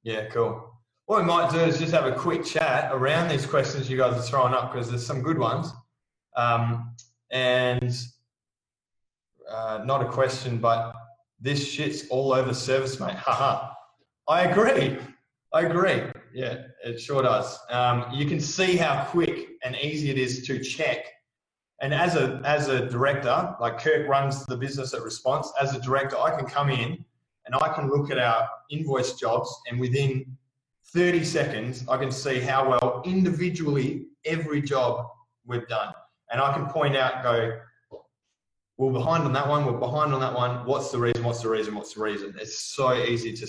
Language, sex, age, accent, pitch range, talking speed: English, male, 20-39, Australian, 120-145 Hz, 180 wpm